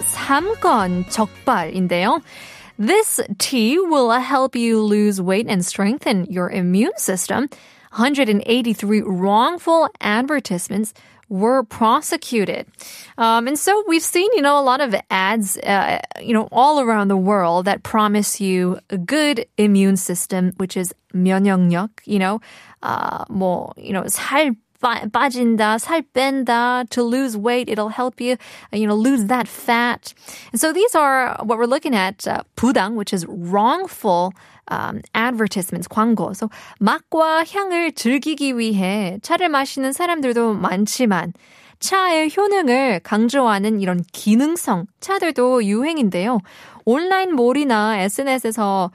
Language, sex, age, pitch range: Korean, female, 20-39, 200-270 Hz